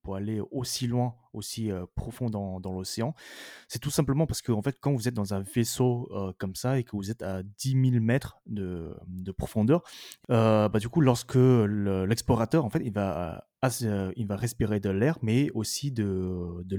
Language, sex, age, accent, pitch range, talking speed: French, male, 20-39, French, 100-130 Hz, 205 wpm